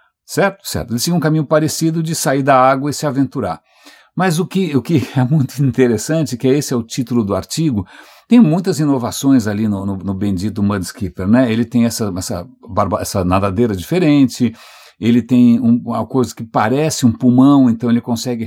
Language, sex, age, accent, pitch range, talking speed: English, male, 60-79, Brazilian, 120-175 Hz, 190 wpm